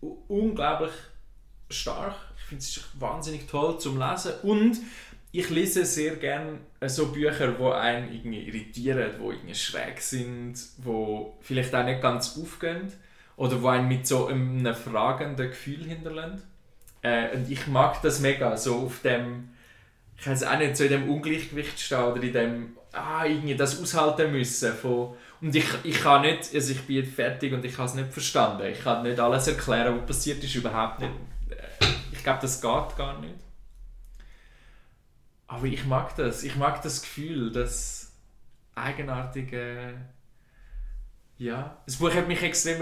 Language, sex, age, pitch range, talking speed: German, male, 20-39, 120-150 Hz, 155 wpm